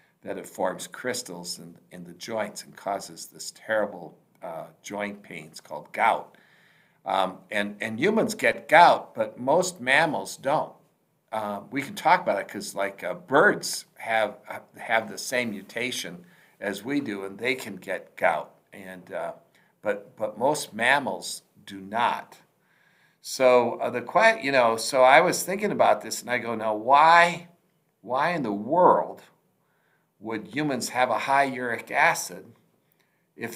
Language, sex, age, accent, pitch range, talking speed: English, male, 60-79, American, 105-135 Hz, 155 wpm